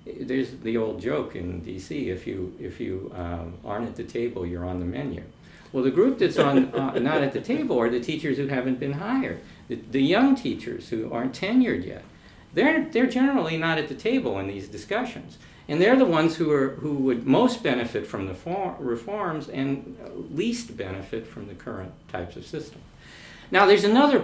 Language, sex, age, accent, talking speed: English, male, 60-79, American, 200 wpm